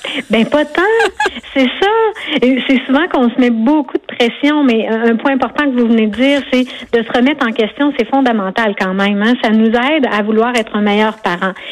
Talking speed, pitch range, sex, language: 215 wpm, 215-265 Hz, female, French